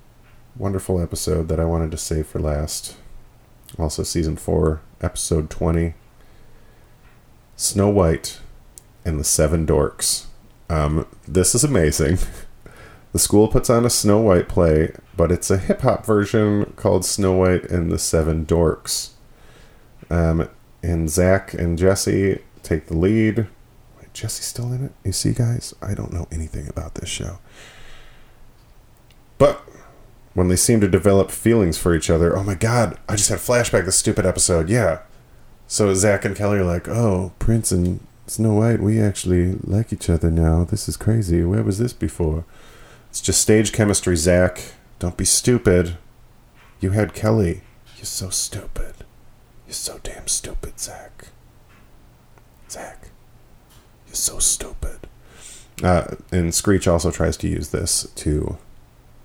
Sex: male